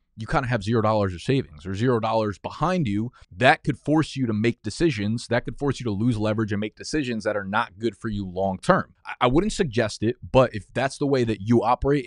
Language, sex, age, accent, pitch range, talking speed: English, male, 20-39, American, 110-135 Hz, 250 wpm